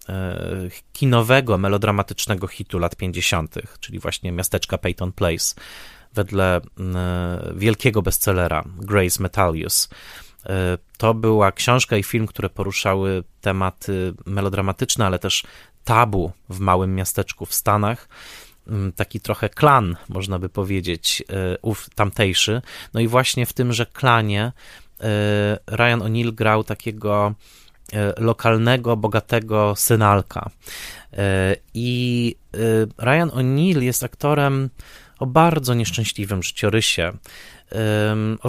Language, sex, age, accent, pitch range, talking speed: Polish, male, 30-49, native, 95-115 Hz, 100 wpm